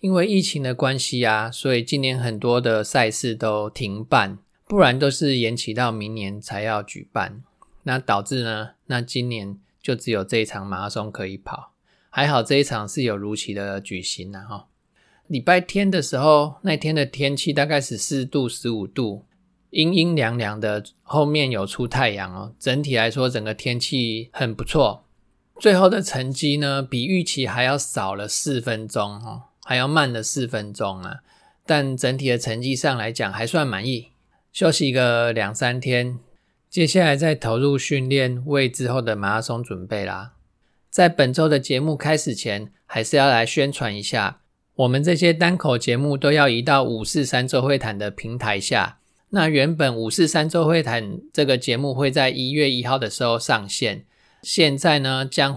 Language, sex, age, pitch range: Chinese, male, 20-39, 110-145 Hz